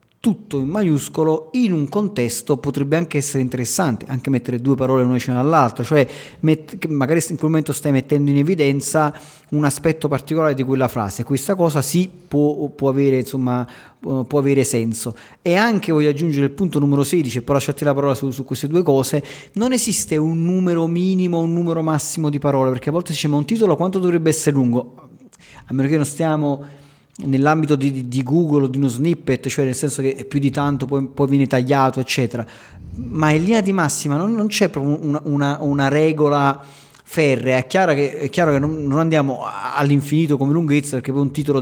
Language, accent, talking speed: Italian, native, 195 wpm